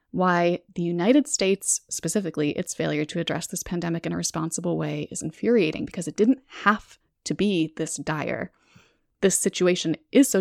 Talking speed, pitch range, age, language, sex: 165 wpm, 160-200 Hz, 20-39, English, female